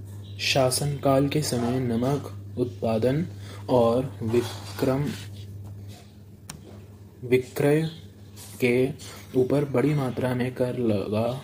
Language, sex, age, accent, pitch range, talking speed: Hindi, male, 20-39, native, 105-125 Hz, 75 wpm